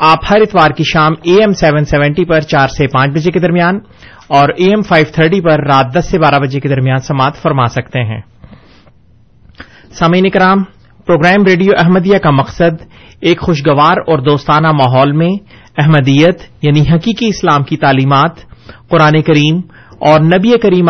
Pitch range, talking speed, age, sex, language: 145-180 Hz, 160 wpm, 30-49, male, Urdu